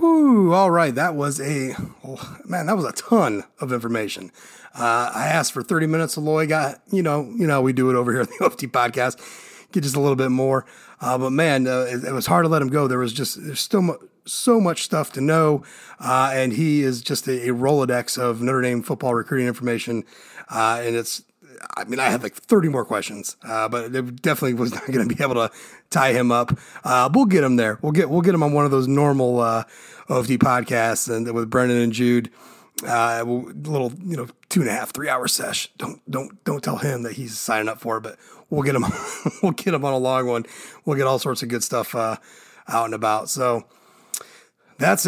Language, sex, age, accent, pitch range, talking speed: English, male, 30-49, American, 125-170 Hz, 230 wpm